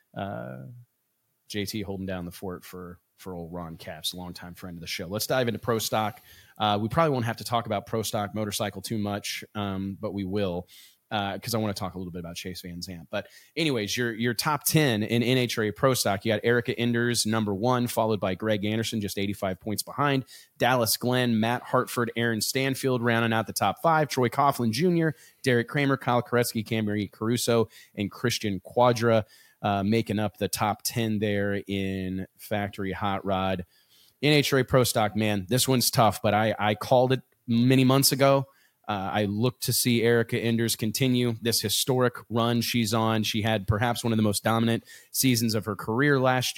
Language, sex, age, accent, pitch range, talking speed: English, male, 30-49, American, 105-125 Hz, 195 wpm